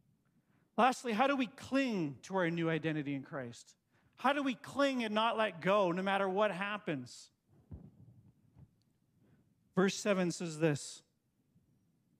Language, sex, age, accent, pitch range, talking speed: English, male, 40-59, American, 165-245 Hz, 135 wpm